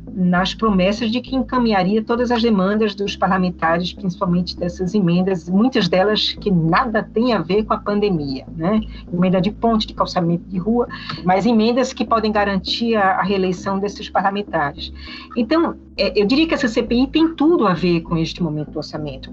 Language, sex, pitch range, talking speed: Portuguese, female, 175-235 Hz, 170 wpm